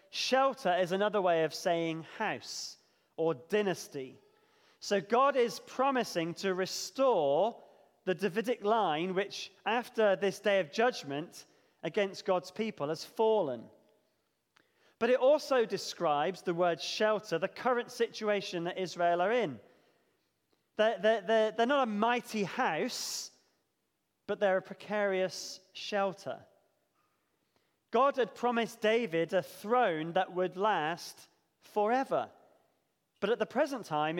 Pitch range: 185-235 Hz